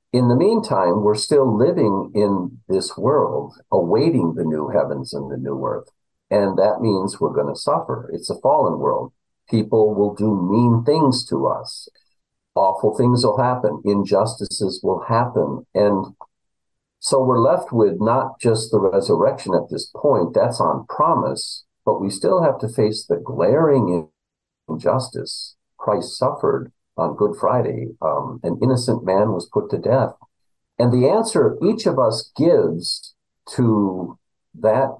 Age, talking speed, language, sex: 50-69, 150 wpm, English, male